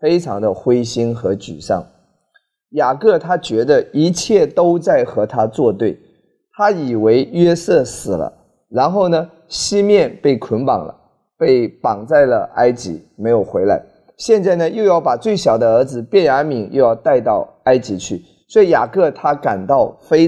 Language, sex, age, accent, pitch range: Chinese, male, 30-49, native, 125-200 Hz